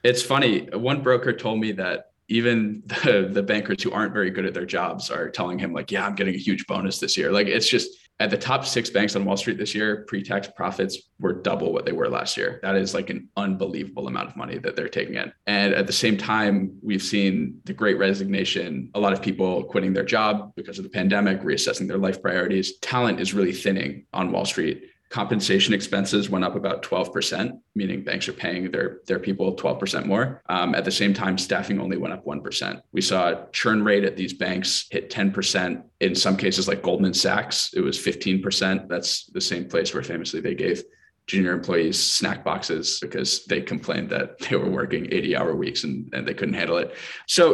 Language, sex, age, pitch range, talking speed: English, male, 20-39, 95-120 Hz, 210 wpm